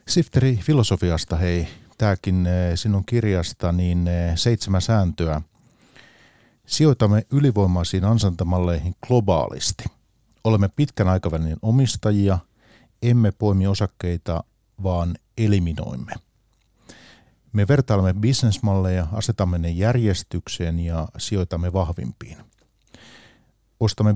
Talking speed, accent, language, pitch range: 80 wpm, native, Finnish, 90-110 Hz